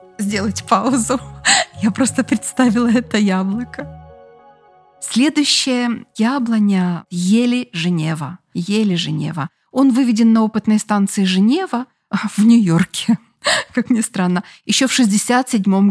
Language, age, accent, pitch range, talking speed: Russian, 20-39, native, 185-235 Hz, 95 wpm